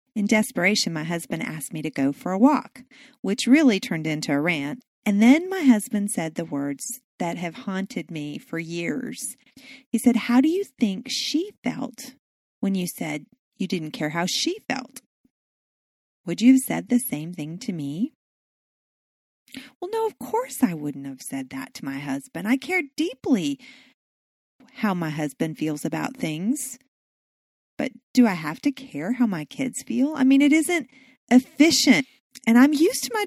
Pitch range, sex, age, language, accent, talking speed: 175-265 Hz, female, 40-59, English, American, 175 wpm